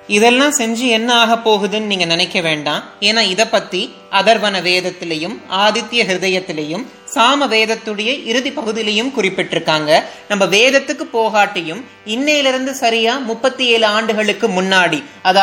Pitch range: 205-255 Hz